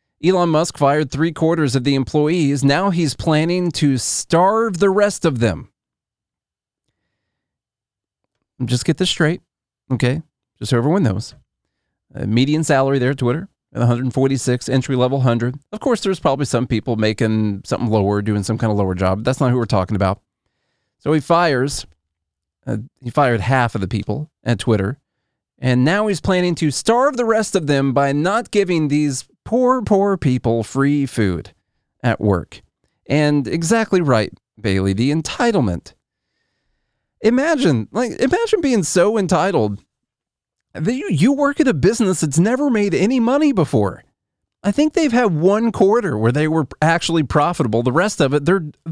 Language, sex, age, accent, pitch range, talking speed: English, male, 30-49, American, 120-195 Hz, 155 wpm